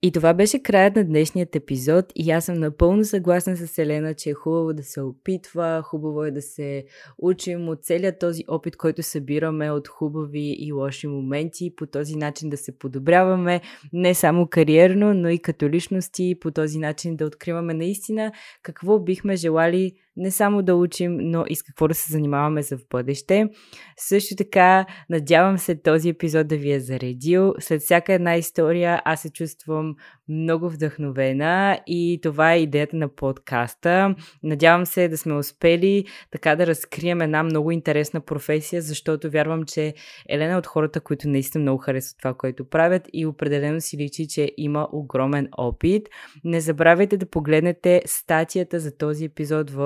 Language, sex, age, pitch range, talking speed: Bulgarian, female, 20-39, 150-175 Hz, 170 wpm